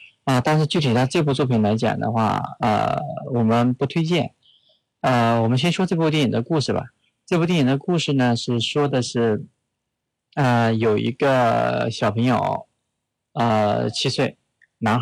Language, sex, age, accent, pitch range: Chinese, male, 20-39, native, 115-140 Hz